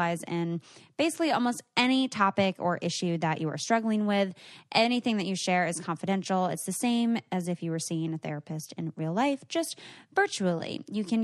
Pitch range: 175-235 Hz